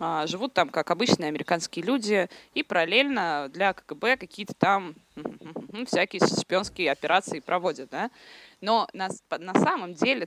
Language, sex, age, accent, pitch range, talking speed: Russian, female, 20-39, native, 175-225 Hz, 125 wpm